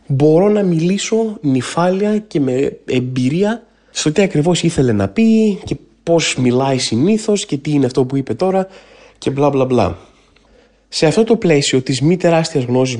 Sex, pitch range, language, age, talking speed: male, 130-175 Hz, Greek, 20-39, 165 wpm